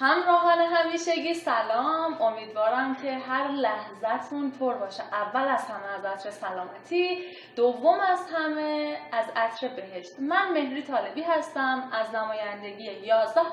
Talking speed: 125 wpm